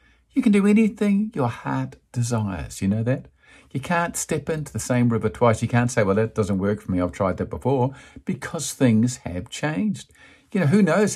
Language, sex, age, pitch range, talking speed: English, male, 50-69, 110-180 Hz, 210 wpm